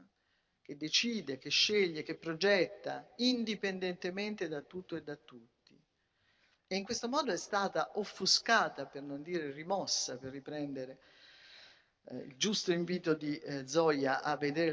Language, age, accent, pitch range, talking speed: Italian, 50-69, native, 135-190 Hz, 140 wpm